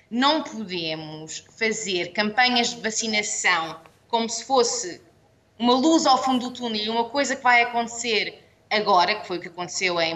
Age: 20-39